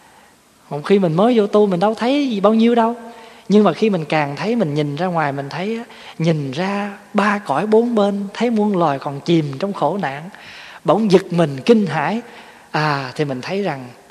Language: Vietnamese